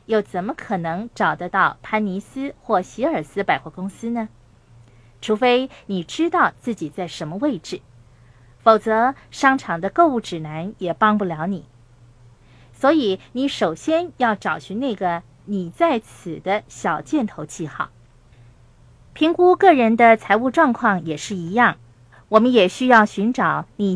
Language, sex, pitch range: Chinese, female, 165-255 Hz